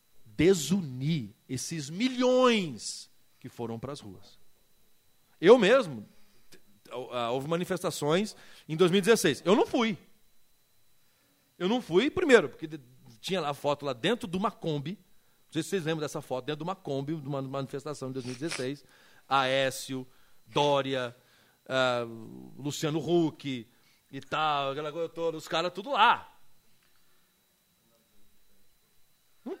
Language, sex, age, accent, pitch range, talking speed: Portuguese, male, 40-59, Brazilian, 130-195 Hz, 120 wpm